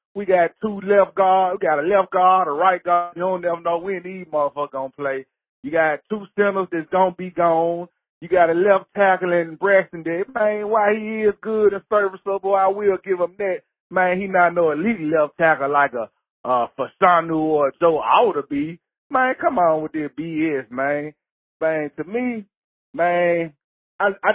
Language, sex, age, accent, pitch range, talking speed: English, male, 40-59, American, 155-195 Hz, 195 wpm